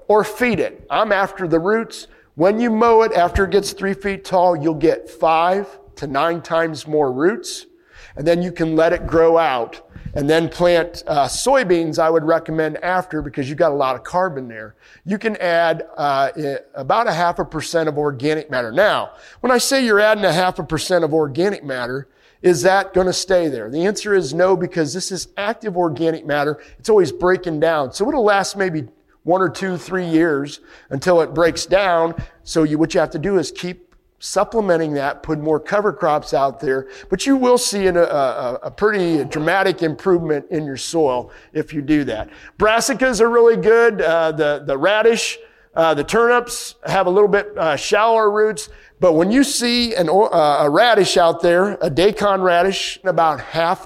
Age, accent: 40-59, American